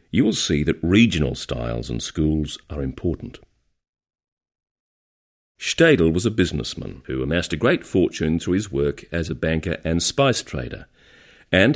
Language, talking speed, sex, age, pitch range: English, 150 wpm, male, 50-69, 80-110 Hz